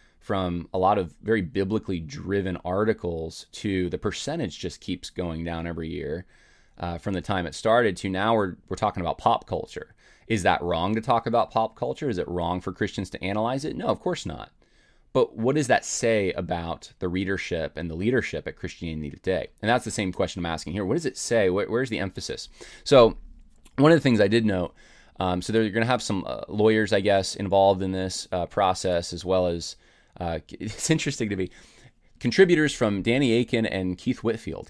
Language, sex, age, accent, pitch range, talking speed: English, male, 20-39, American, 85-110 Hz, 210 wpm